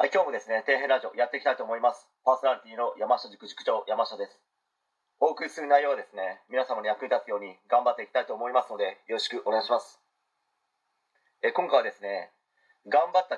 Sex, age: male, 30-49